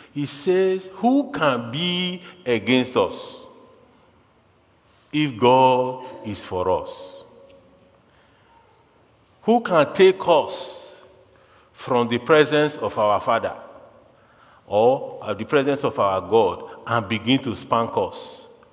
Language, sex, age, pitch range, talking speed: English, male, 50-69, 100-150 Hz, 105 wpm